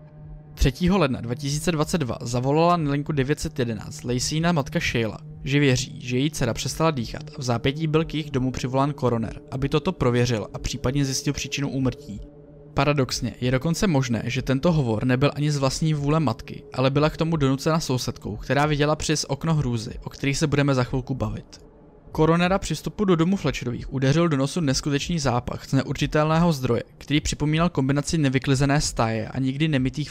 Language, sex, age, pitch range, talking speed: Czech, male, 20-39, 130-155 Hz, 175 wpm